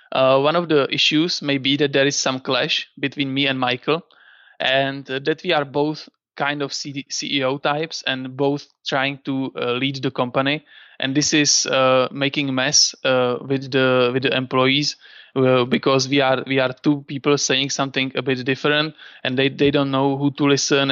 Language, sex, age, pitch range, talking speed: English, male, 20-39, 130-145 Hz, 190 wpm